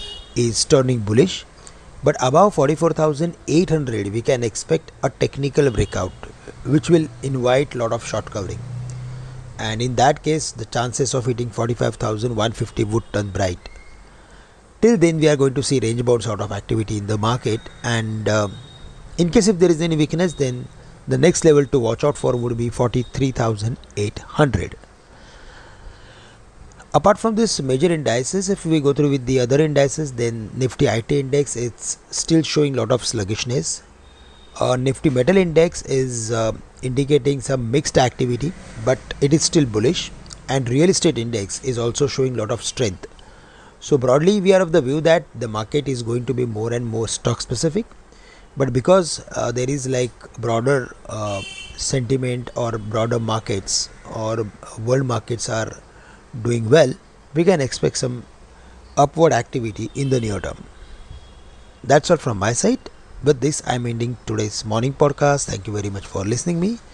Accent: Indian